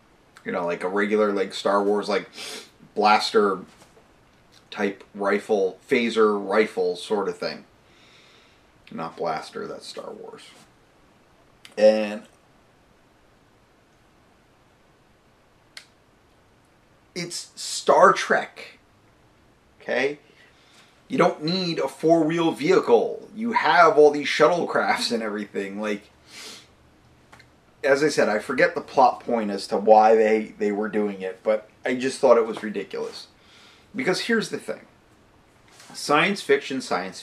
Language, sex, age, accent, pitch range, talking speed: English, male, 30-49, American, 110-170 Hz, 115 wpm